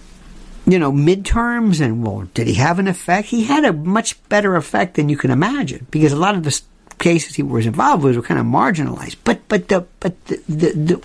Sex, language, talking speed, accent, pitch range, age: male, English, 215 wpm, American, 155-225 Hz, 60-79